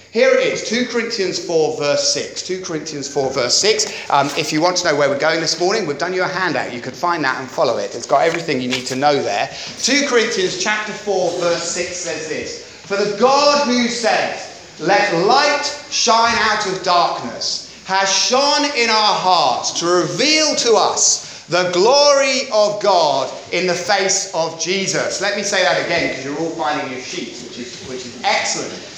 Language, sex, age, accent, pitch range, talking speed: English, male, 30-49, British, 175-270 Hz, 200 wpm